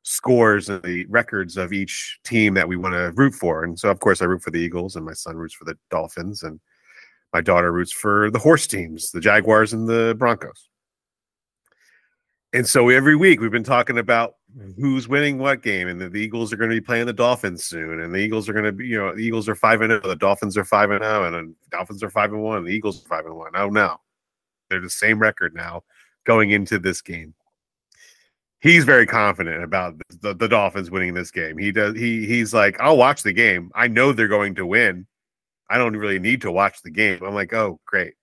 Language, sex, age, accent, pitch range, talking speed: English, male, 40-59, American, 90-115 Hz, 225 wpm